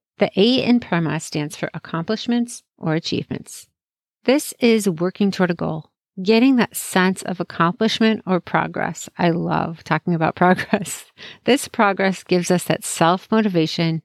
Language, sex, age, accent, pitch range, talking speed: English, female, 50-69, American, 165-210 Hz, 140 wpm